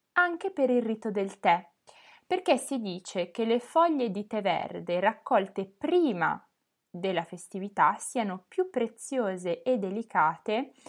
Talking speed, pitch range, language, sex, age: 130 wpm, 195-275 Hz, Italian, female, 20-39